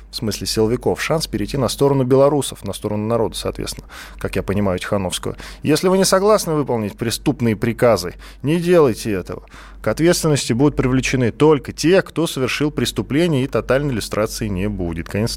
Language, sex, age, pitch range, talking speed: Russian, male, 20-39, 95-130 Hz, 160 wpm